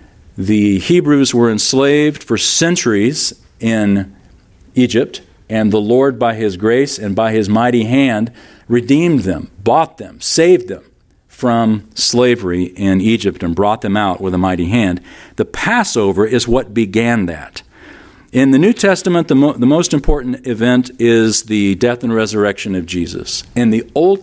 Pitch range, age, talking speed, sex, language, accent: 95-125 Hz, 50-69, 155 wpm, male, English, American